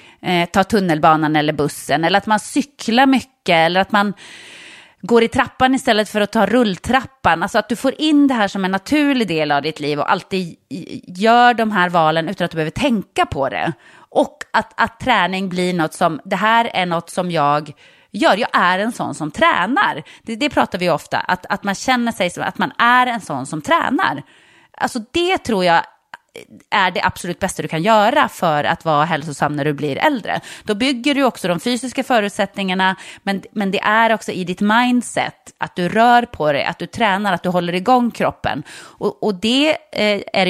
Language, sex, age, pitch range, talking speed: English, female, 30-49, 170-235 Hz, 205 wpm